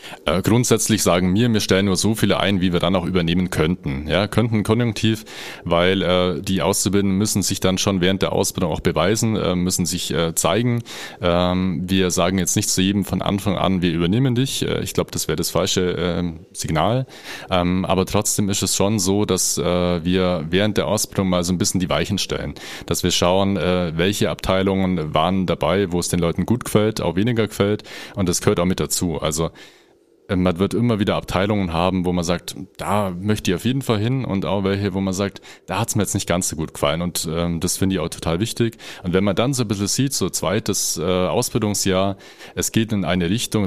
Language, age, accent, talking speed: German, 30-49, German, 220 wpm